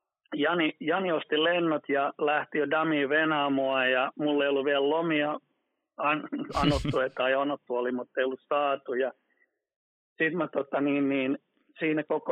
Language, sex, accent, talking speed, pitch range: Finnish, male, native, 155 wpm, 130-155 Hz